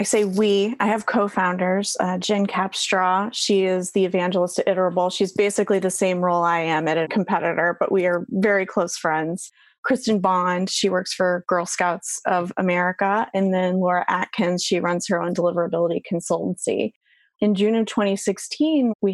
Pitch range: 180-210 Hz